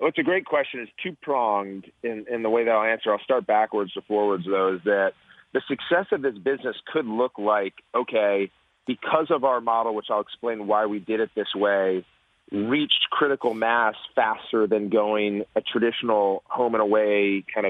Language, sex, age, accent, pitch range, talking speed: English, male, 30-49, American, 105-140 Hz, 180 wpm